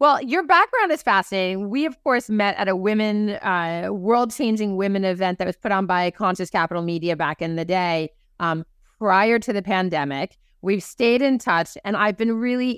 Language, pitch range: English, 165-205 Hz